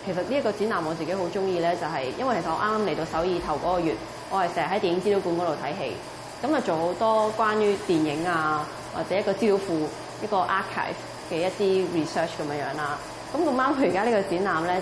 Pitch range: 165-210 Hz